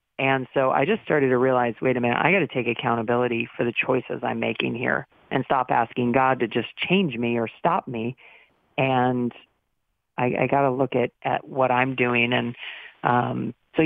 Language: English